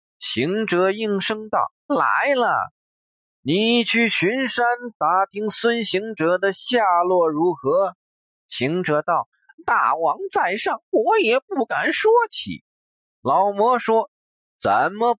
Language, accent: Chinese, native